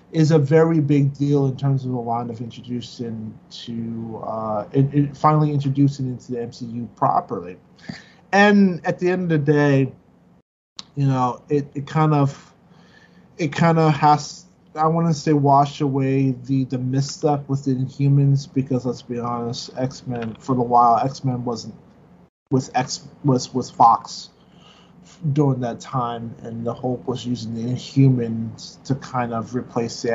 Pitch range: 120-140 Hz